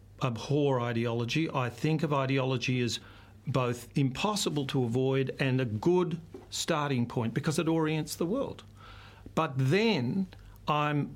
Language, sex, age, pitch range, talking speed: English, male, 50-69, 120-155 Hz, 130 wpm